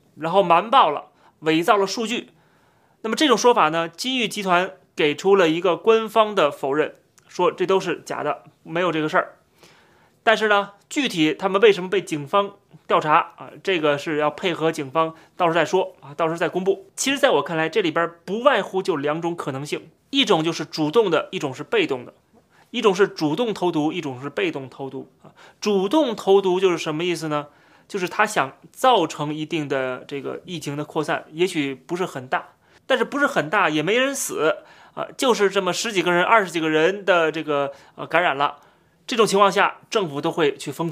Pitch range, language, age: 155-205 Hz, Chinese, 30-49